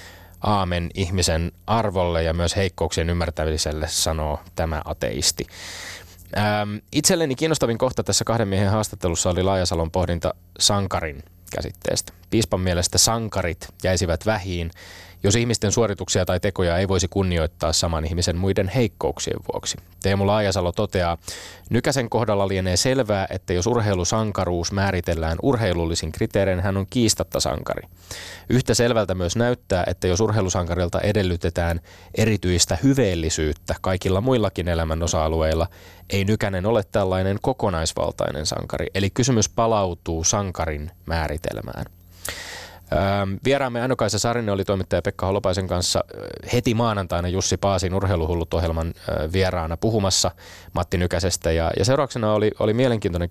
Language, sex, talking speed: Finnish, male, 120 wpm